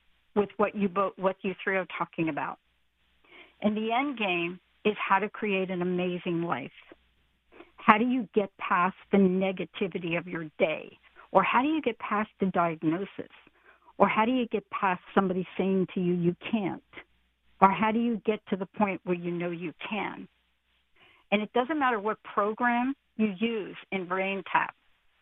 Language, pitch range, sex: English, 170-215 Hz, female